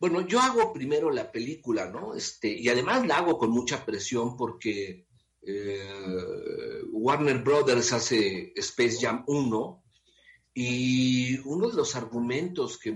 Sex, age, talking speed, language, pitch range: male, 50-69, 135 wpm, Spanish, 110-165 Hz